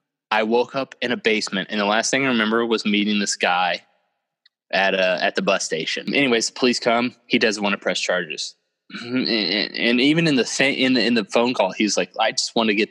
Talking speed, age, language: 230 wpm, 20-39, English